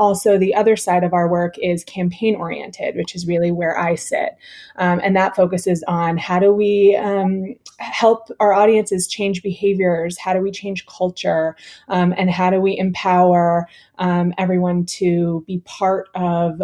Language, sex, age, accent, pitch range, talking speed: English, female, 20-39, American, 170-195 Hz, 170 wpm